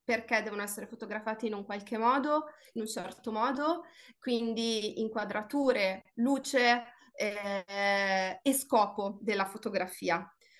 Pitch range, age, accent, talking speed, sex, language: 205-245 Hz, 30-49, native, 115 wpm, female, Italian